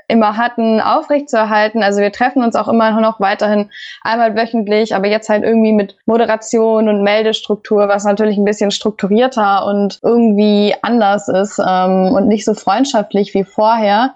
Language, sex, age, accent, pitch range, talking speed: German, female, 20-39, German, 195-225 Hz, 155 wpm